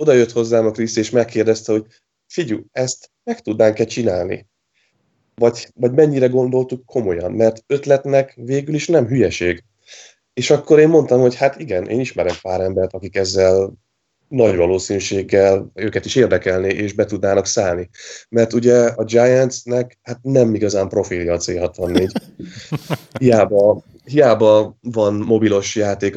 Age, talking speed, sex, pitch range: 20-39, 140 wpm, male, 100-120 Hz